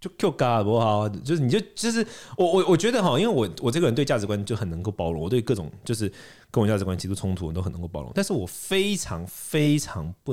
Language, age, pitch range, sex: Chinese, 30-49, 100-165 Hz, male